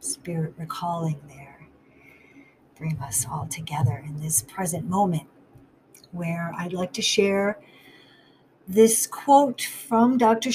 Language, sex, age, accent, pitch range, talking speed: English, female, 50-69, American, 160-215 Hz, 115 wpm